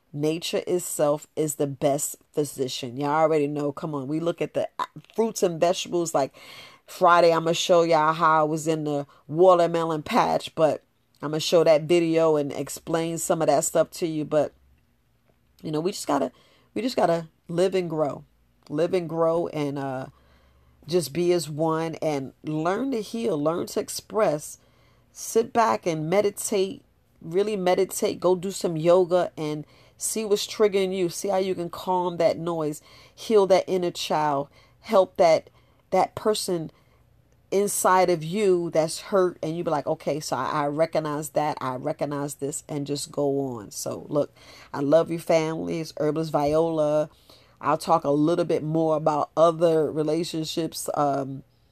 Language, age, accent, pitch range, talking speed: English, 40-59, American, 150-175 Hz, 170 wpm